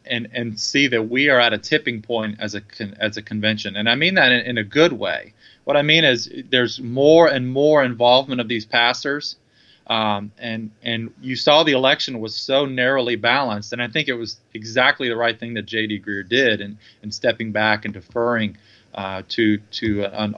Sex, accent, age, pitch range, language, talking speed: male, American, 30-49, 110-130 Hz, English, 210 wpm